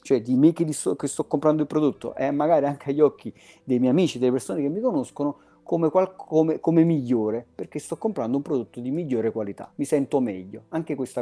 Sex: male